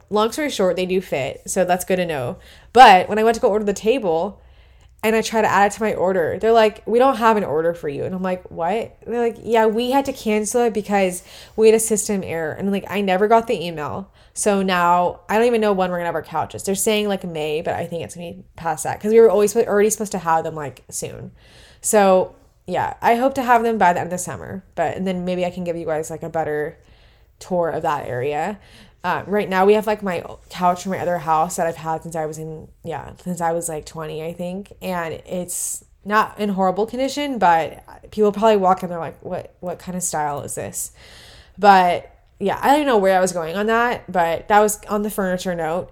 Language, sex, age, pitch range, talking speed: English, female, 20-39, 170-215 Hz, 250 wpm